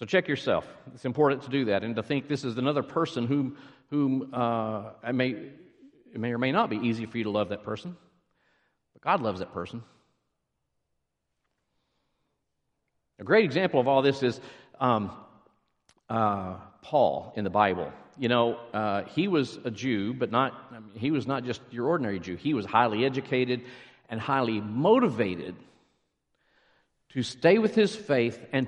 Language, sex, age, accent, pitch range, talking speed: English, male, 50-69, American, 115-160 Hz, 170 wpm